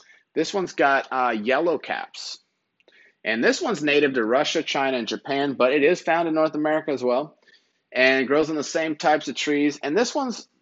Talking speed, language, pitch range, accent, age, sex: 200 wpm, English, 120-165 Hz, American, 30-49, male